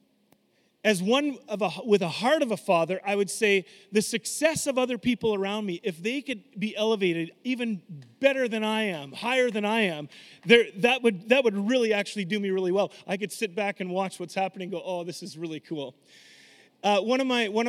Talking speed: 215 wpm